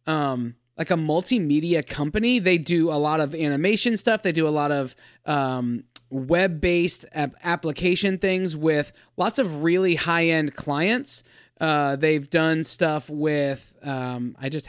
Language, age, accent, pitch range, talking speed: English, 20-39, American, 145-180 Hz, 145 wpm